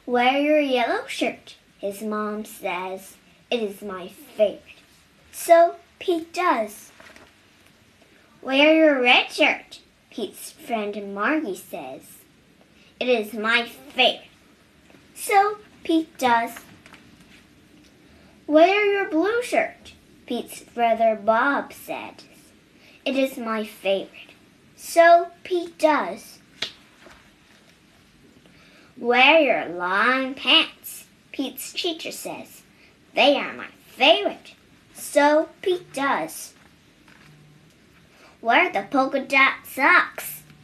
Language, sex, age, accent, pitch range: Chinese, male, 10-29, American, 220-335 Hz